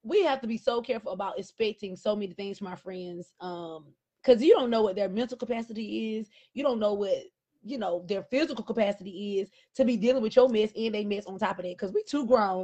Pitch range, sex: 215-270 Hz, female